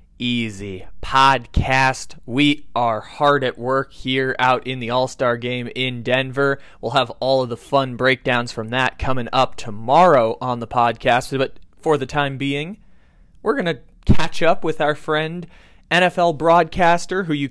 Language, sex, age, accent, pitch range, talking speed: English, male, 20-39, American, 120-145 Hz, 165 wpm